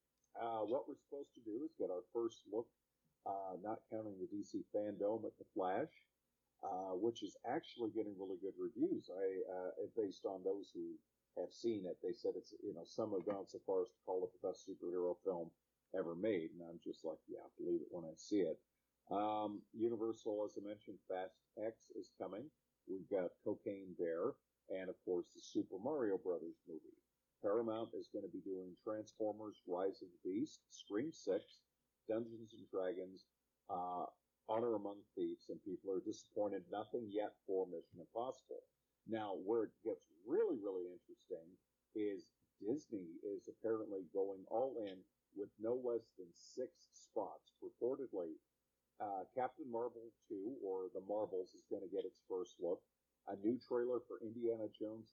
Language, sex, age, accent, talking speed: English, male, 50-69, American, 175 wpm